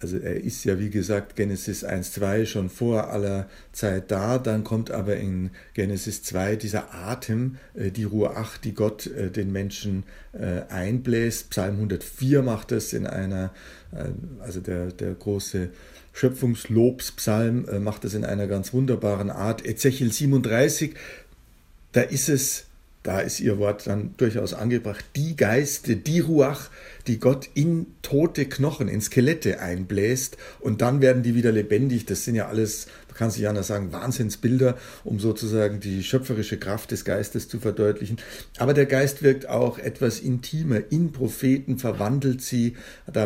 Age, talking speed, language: 60-79, 150 wpm, German